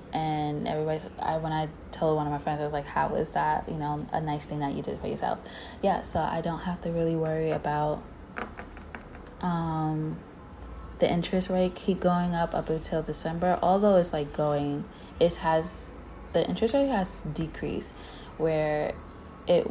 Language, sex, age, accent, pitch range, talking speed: English, female, 20-39, American, 145-165 Hz, 175 wpm